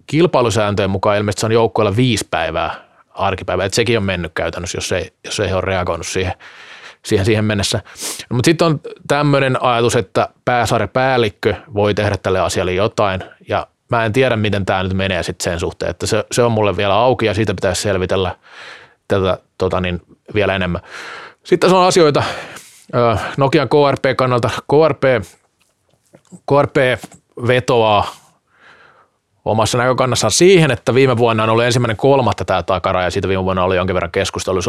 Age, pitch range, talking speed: 20-39, 100-125 Hz, 150 wpm